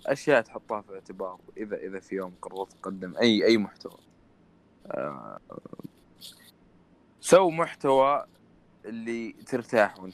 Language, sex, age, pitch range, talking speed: Arabic, male, 20-39, 95-120 Hz, 110 wpm